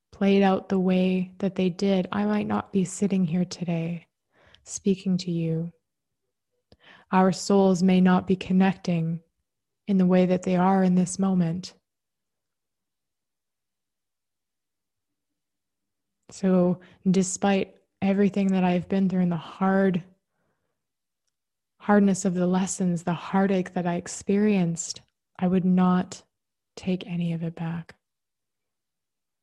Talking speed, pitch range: 120 wpm, 175-195 Hz